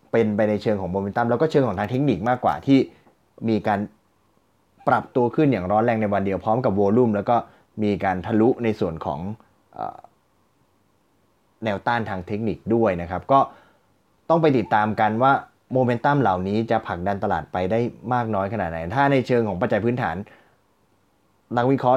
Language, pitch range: Thai, 100-120 Hz